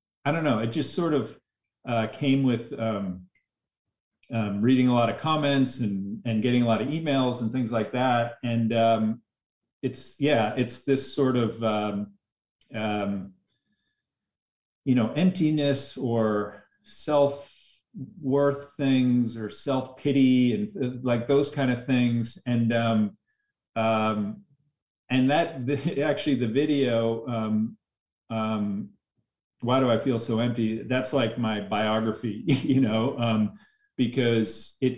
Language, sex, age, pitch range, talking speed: English, male, 40-59, 110-135 Hz, 135 wpm